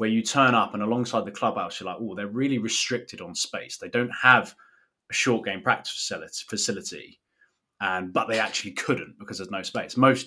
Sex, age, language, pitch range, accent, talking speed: male, 20-39, English, 100-125 Hz, British, 205 wpm